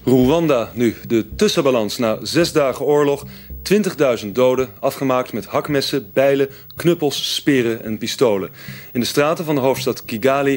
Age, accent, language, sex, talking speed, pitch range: 30-49, Dutch, Dutch, male, 140 wpm, 115-140 Hz